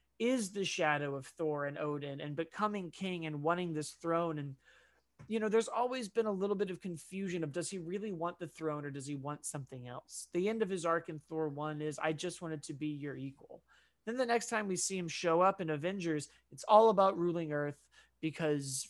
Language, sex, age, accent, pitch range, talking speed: English, male, 30-49, American, 150-195 Hz, 225 wpm